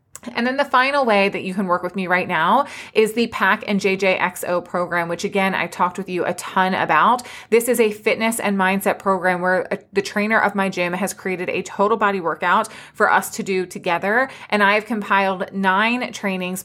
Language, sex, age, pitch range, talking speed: English, female, 20-39, 180-215 Hz, 205 wpm